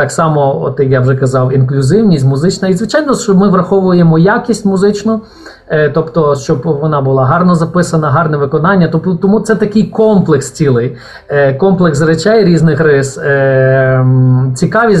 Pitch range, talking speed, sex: 145-185 Hz, 130 wpm, male